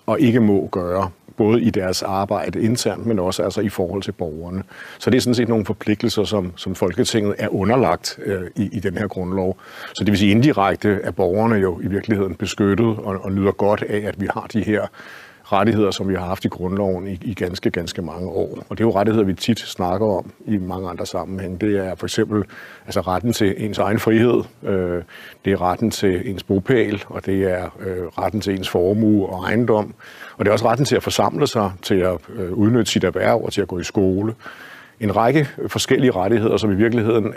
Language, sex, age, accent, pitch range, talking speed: Danish, male, 60-79, native, 95-110 Hz, 210 wpm